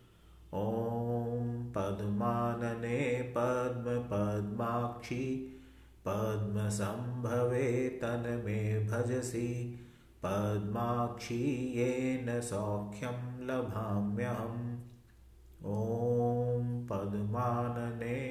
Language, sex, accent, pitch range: Hindi, male, native, 105-120 Hz